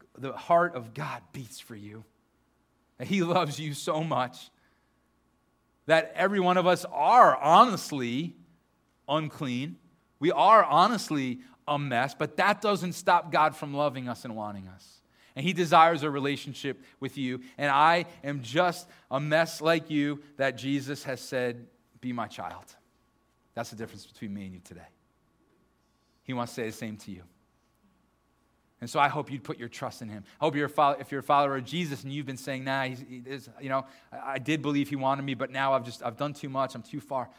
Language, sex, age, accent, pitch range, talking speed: English, male, 30-49, American, 125-160 Hz, 195 wpm